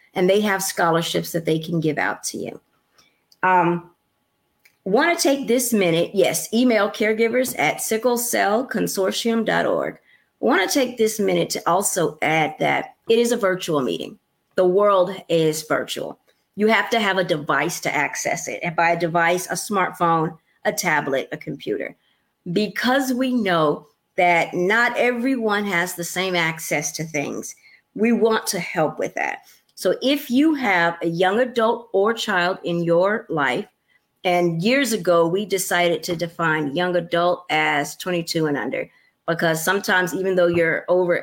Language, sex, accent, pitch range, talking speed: English, female, American, 170-215 Hz, 155 wpm